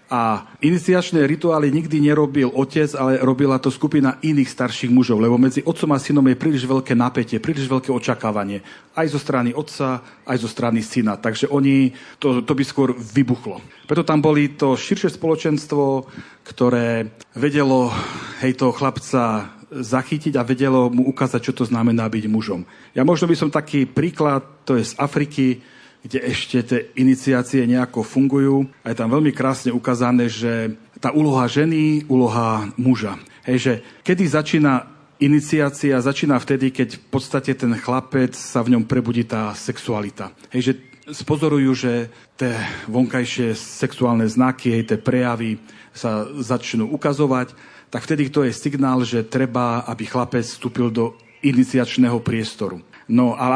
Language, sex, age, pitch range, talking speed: Slovak, male, 40-59, 120-145 Hz, 150 wpm